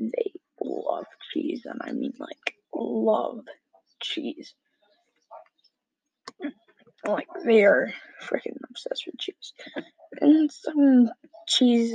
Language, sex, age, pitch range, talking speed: English, female, 10-29, 240-315 Hz, 95 wpm